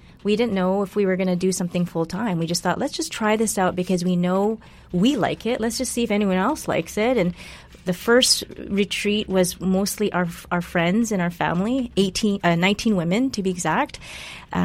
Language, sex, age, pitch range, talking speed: English, female, 30-49, 170-195 Hz, 220 wpm